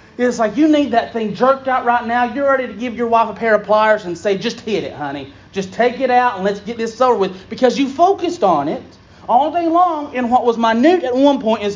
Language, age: English, 40-59